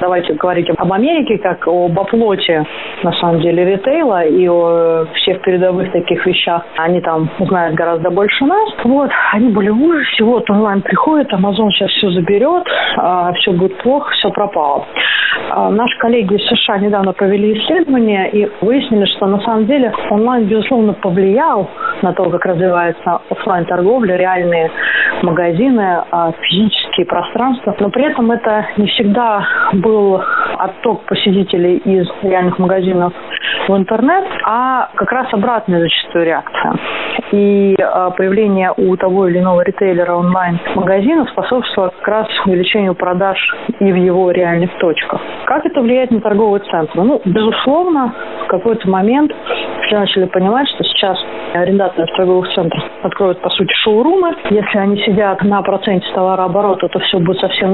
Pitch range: 180-215 Hz